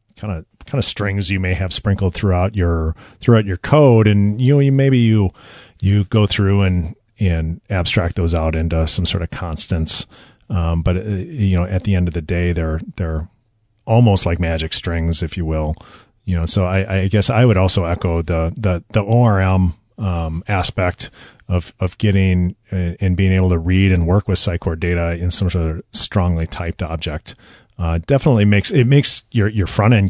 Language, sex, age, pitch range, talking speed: English, male, 40-59, 85-100 Hz, 195 wpm